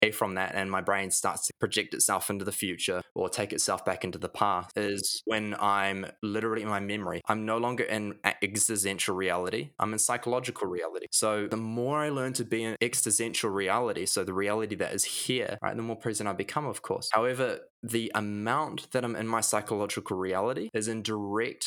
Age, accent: 10-29, Australian